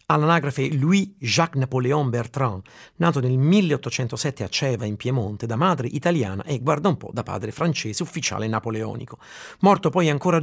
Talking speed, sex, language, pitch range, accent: 145 wpm, male, Italian, 115-165 Hz, native